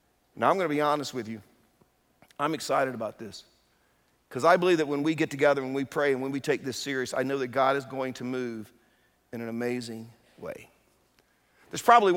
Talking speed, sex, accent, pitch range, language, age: 210 wpm, male, American, 125-150 Hz, English, 50-69